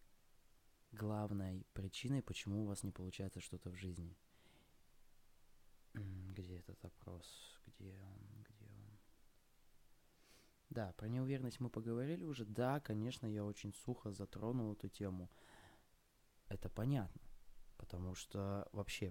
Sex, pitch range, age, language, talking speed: male, 95-120 Hz, 20-39, Russian, 115 wpm